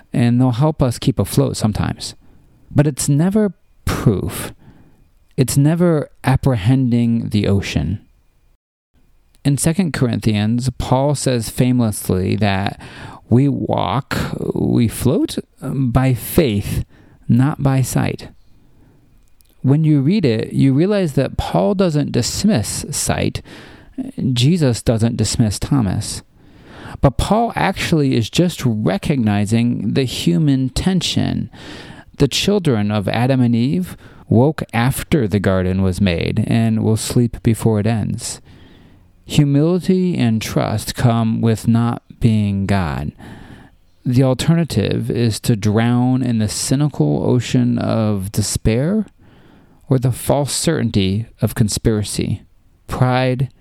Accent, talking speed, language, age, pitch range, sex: American, 110 wpm, English, 40-59, 110-140 Hz, male